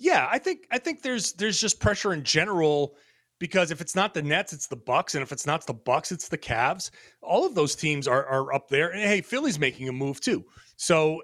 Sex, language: male, English